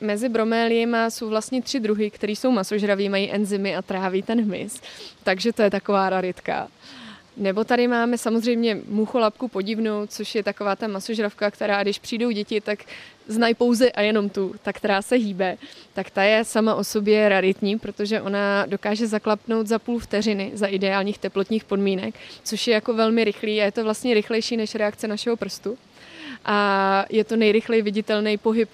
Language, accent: Czech, native